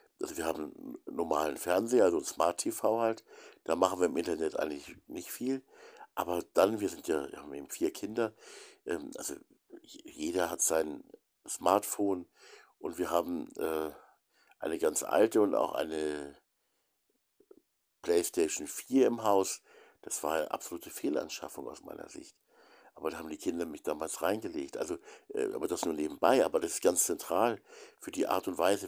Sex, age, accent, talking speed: male, 60-79, German, 165 wpm